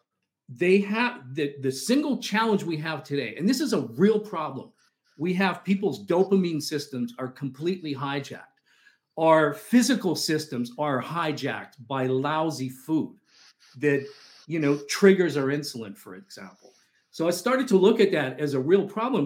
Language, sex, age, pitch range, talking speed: English, male, 50-69, 140-200 Hz, 155 wpm